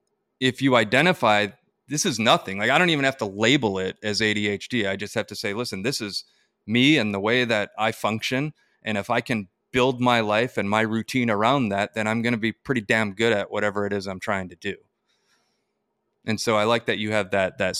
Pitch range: 100-120 Hz